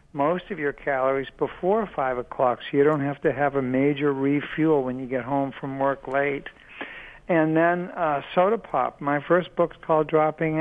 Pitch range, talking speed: 140-170 Hz, 185 wpm